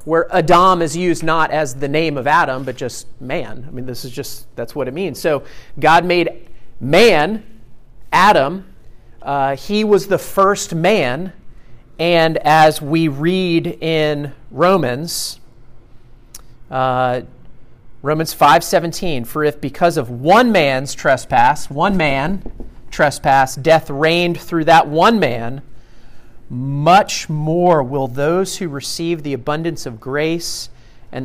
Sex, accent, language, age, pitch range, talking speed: male, American, English, 40-59, 125-170 Hz, 135 wpm